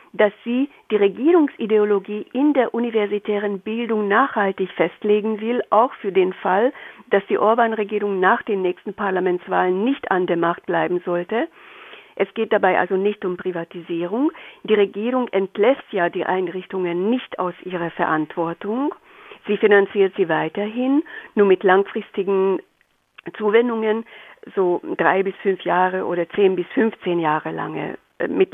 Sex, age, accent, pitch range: female, 50-69, German, 175-215 Hz